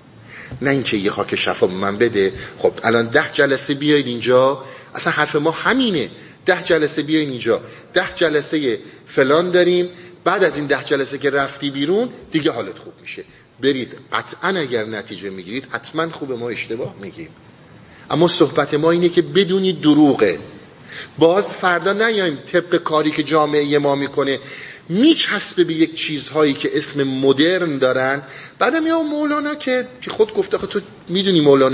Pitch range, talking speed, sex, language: 120-165 Hz, 155 wpm, male, Persian